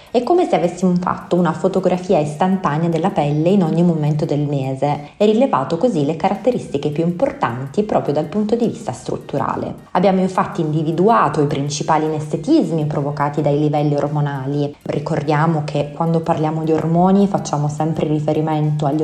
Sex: female